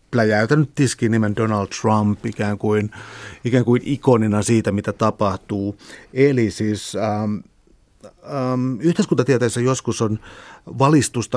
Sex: male